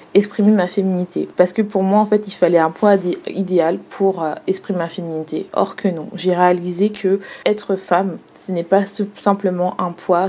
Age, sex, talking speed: 20-39, female, 185 wpm